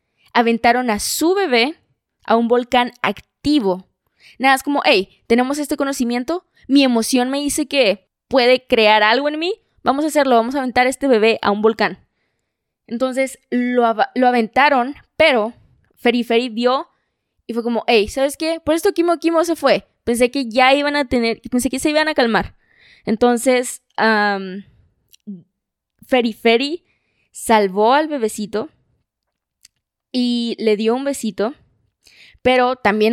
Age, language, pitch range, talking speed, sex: 20-39, Spanish, 215-265 Hz, 150 wpm, female